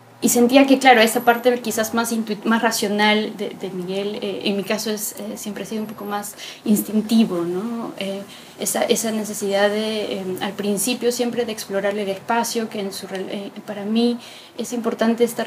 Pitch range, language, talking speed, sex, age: 195-225 Hz, Spanish, 195 wpm, female, 20-39